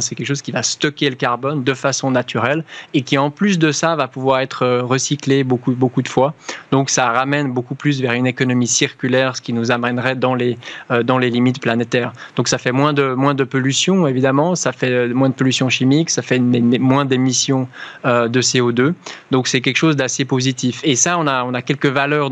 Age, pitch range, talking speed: 20-39, 125-145 Hz, 210 wpm